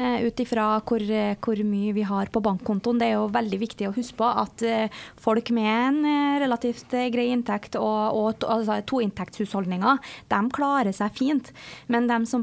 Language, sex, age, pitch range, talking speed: English, female, 20-39, 220-270 Hz, 165 wpm